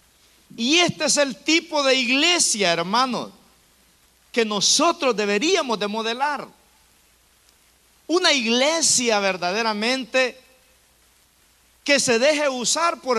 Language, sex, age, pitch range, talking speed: Spanish, male, 50-69, 210-290 Hz, 95 wpm